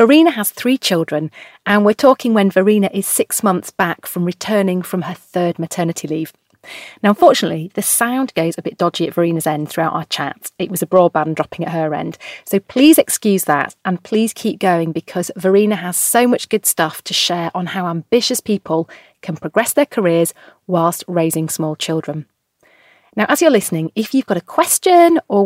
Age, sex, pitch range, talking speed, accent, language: 30-49, female, 170-220 Hz, 190 wpm, British, English